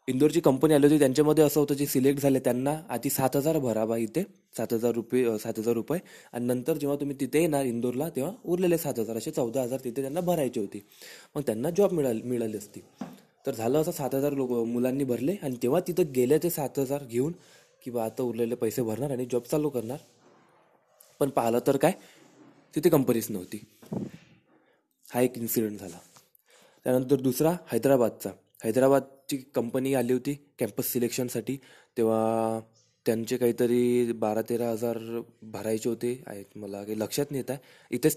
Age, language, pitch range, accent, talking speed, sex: 20-39, Marathi, 120-145 Hz, native, 130 wpm, male